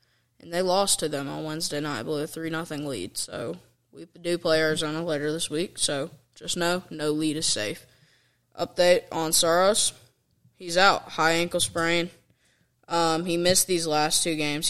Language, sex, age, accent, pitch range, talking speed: English, female, 10-29, American, 135-170 Hz, 175 wpm